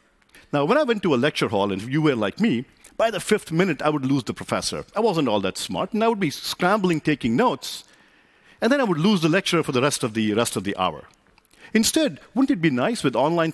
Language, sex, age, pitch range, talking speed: Portuguese, male, 50-69, 115-185 Hz, 255 wpm